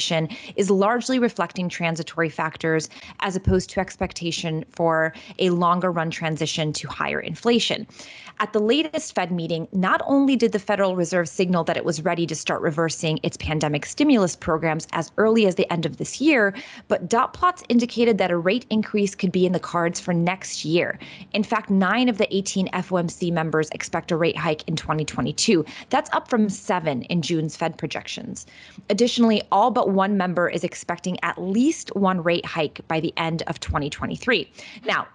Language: English